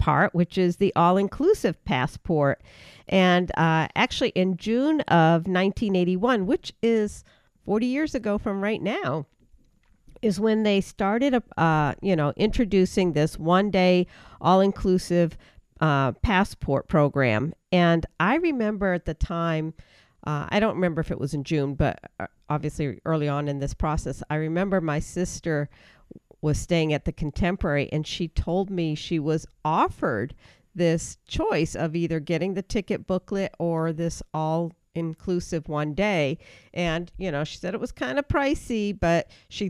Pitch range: 150-195 Hz